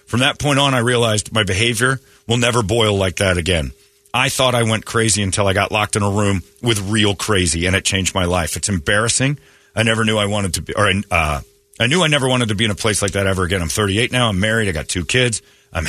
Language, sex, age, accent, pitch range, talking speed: English, male, 40-59, American, 85-110 Hz, 265 wpm